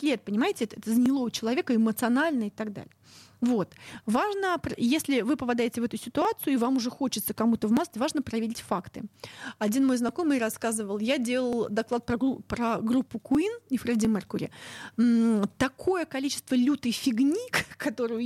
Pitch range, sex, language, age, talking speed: 225-275 Hz, female, Russian, 30-49, 170 wpm